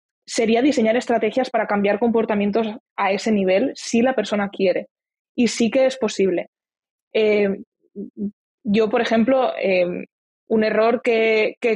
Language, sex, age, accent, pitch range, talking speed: Spanish, female, 20-39, Spanish, 200-250 Hz, 140 wpm